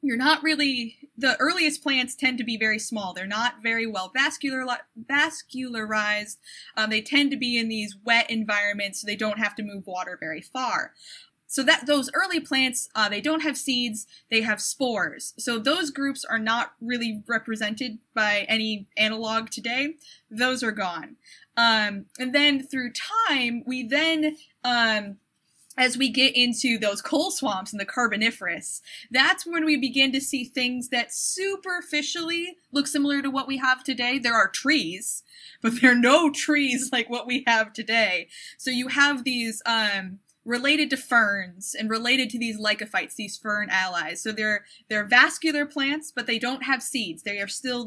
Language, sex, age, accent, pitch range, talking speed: English, female, 10-29, American, 215-275 Hz, 170 wpm